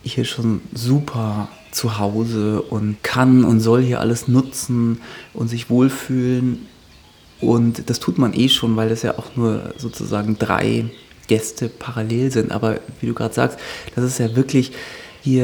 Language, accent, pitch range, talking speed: German, German, 115-130 Hz, 160 wpm